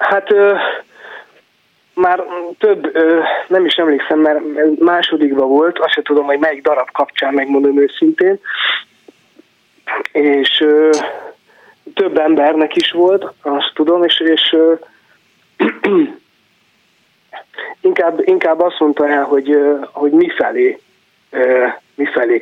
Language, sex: Hungarian, male